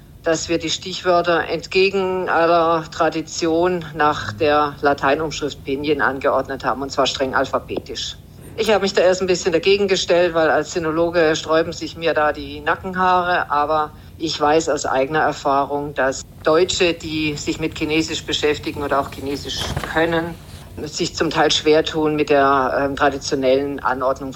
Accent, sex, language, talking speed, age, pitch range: German, female, German, 155 wpm, 50-69, 145-175 Hz